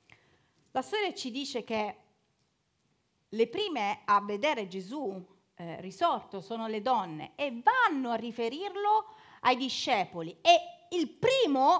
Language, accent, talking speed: Italian, native, 120 wpm